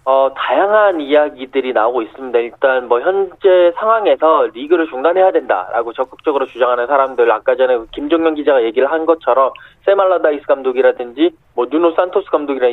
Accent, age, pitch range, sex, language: native, 20-39, 145-240 Hz, male, Korean